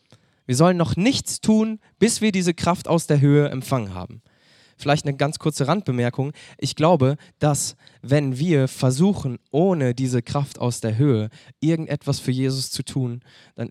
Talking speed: 160 wpm